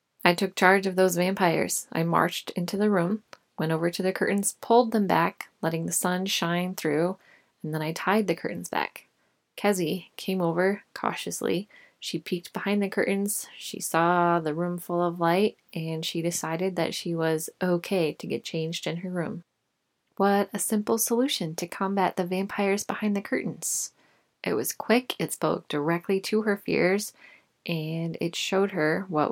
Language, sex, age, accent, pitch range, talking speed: English, female, 20-39, American, 165-200 Hz, 175 wpm